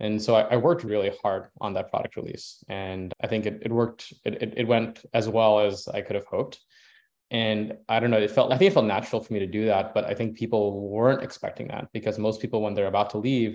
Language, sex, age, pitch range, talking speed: English, male, 20-39, 100-120 Hz, 255 wpm